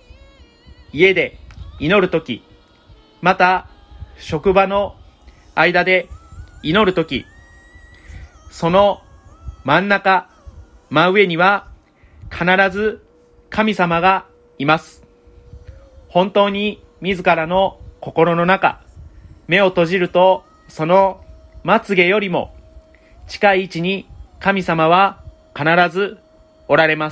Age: 30-49